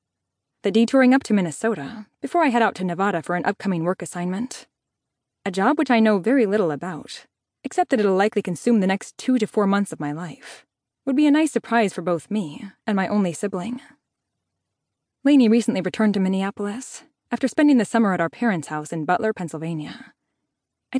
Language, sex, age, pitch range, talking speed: English, female, 20-39, 175-235 Hz, 190 wpm